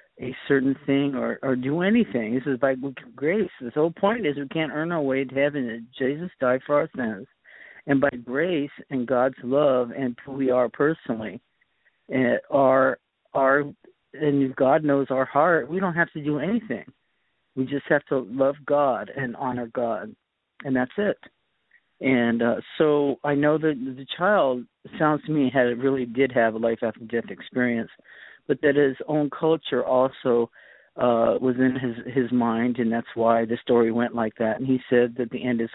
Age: 50-69